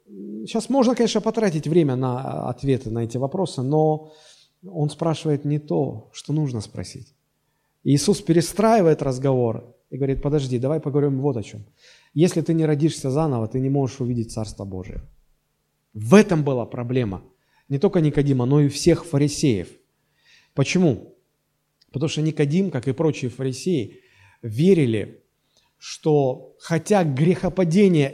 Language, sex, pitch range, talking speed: Russian, male, 135-175 Hz, 135 wpm